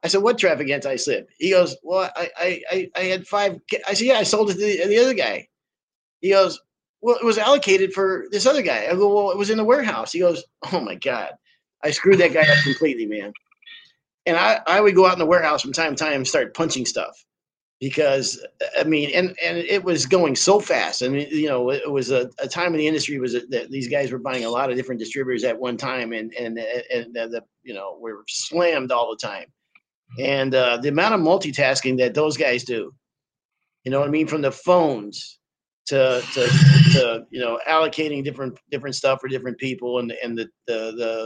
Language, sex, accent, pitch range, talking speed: English, male, American, 130-180 Hz, 230 wpm